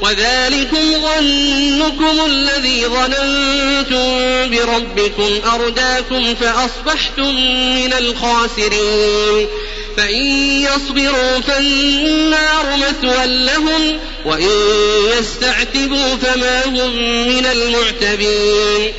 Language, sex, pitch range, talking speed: Arabic, male, 235-275 Hz, 65 wpm